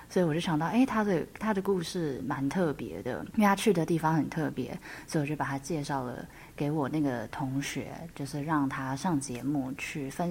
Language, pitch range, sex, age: Chinese, 140-175 Hz, female, 20-39